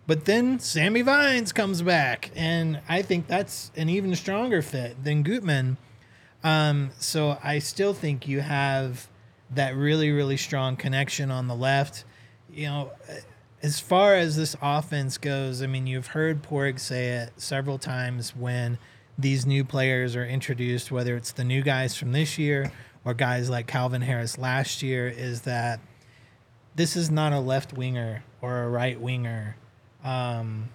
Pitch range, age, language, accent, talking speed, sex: 120-145 Hz, 30-49, English, American, 160 wpm, male